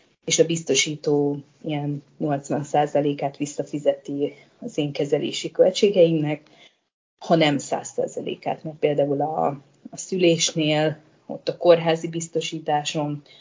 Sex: female